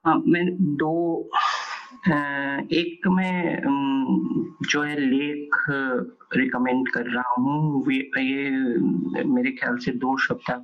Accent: native